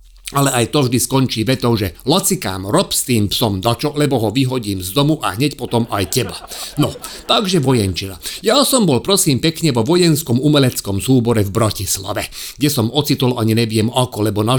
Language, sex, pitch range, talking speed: Slovak, male, 125-170 Hz, 185 wpm